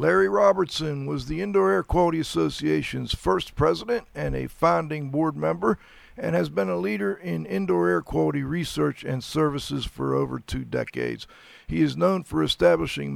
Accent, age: American, 50-69